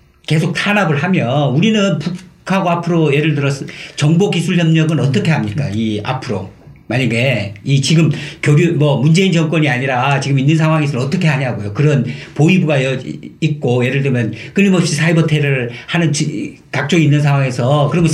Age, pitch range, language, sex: 50-69, 145-190 Hz, Korean, male